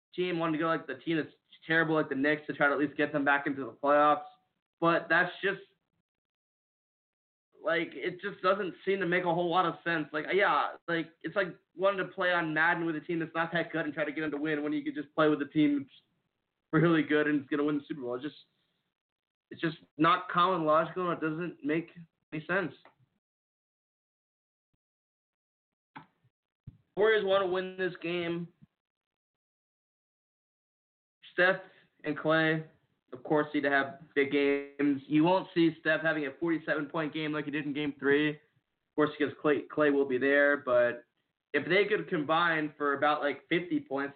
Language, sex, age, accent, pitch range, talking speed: English, male, 20-39, American, 150-175 Hz, 195 wpm